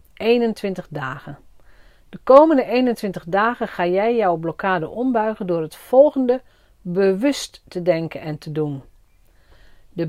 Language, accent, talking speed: Dutch, Dutch, 125 wpm